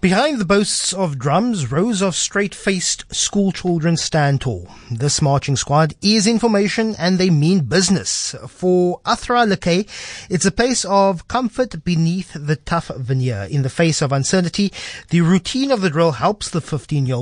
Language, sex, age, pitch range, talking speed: English, male, 30-49, 145-195 Hz, 165 wpm